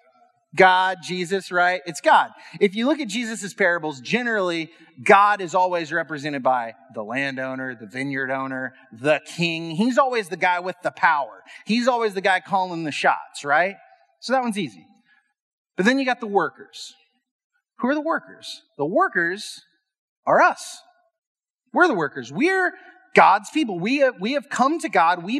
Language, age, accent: English, 30-49, American